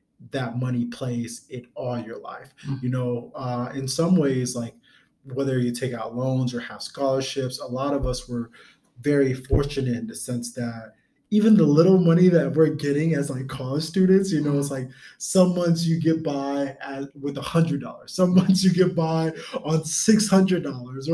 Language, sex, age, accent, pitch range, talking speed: English, male, 20-39, American, 120-150 Hz, 180 wpm